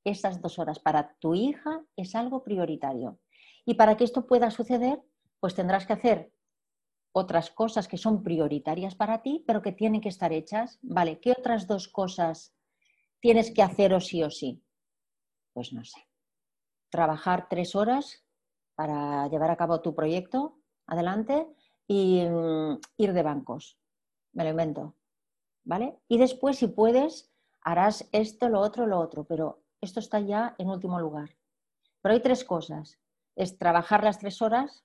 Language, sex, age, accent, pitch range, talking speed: Spanish, female, 40-59, Spanish, 170-235 Hz, 155 wpm